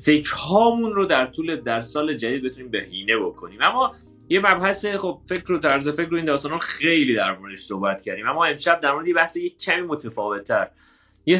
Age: 30-49